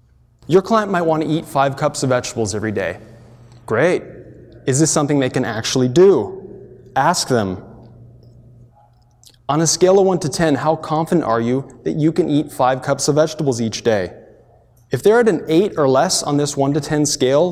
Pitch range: 120-155 Hz